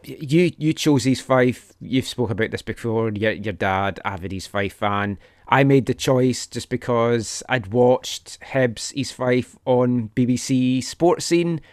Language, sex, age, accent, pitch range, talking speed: English, male, 30-49, British, 110-140 Hz, 165 wpm